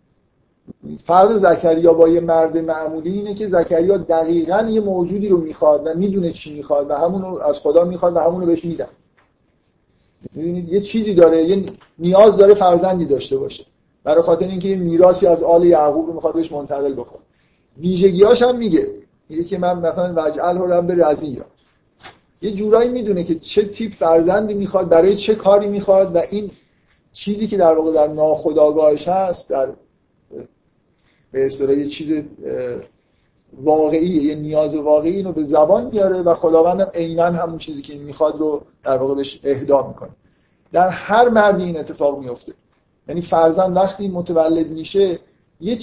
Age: 50-69